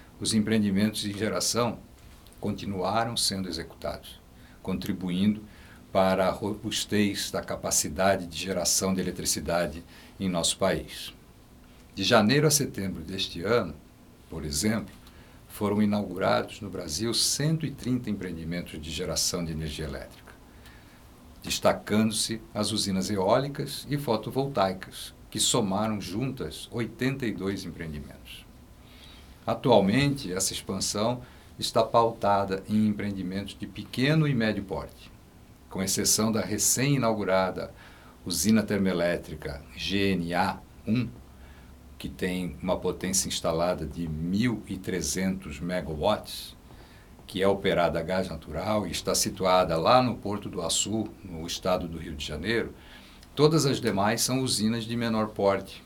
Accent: Brazilian